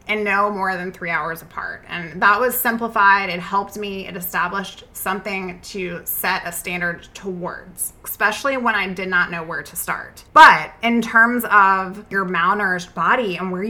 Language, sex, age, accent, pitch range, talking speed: English, female, 20-39, American, 185-230 Hz, 175 wpm